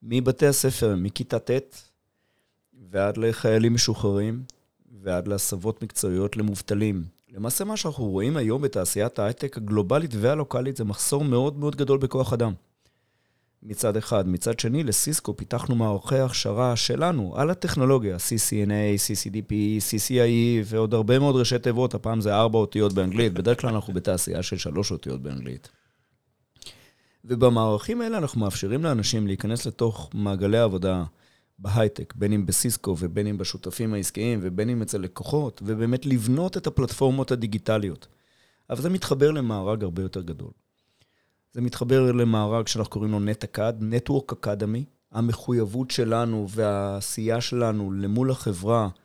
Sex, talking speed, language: male, 130 wpm, Hebrew